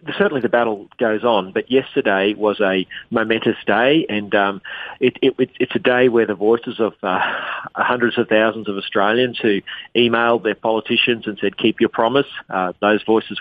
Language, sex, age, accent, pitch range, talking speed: English, male, 40-59, Australian, 105-125 Hz, 180 wpm